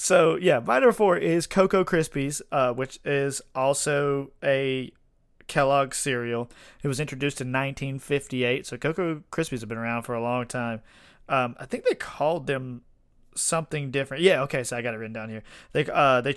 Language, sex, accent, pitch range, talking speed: English, male, American, 120-150 Hz, 185 wpm